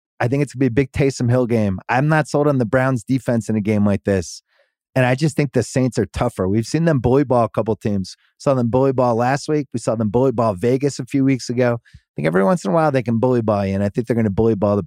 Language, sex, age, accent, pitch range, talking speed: English, male, 30-49, American, 110-140 Hz, 305 wpm